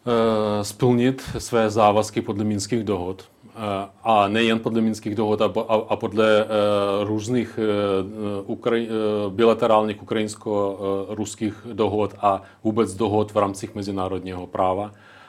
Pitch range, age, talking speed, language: 105-120 Hz, 30-49, 100 wpm, Czech